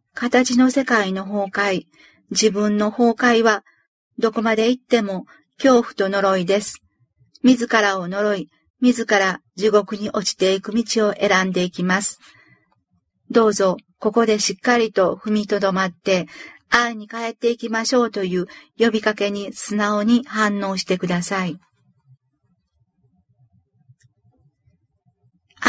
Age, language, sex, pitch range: 50-69, Japanese, female, 185-235 Hz